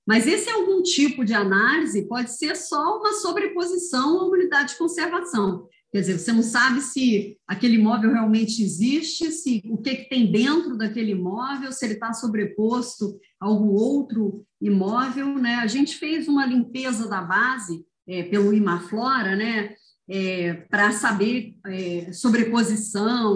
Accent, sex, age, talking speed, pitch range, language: Brazilian, female, 40-59, 150 wpm, 195-260 Hz, Portuguese